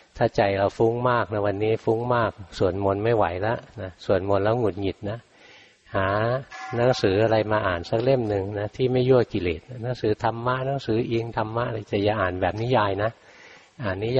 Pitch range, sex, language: 100-120 Hz, male, Thai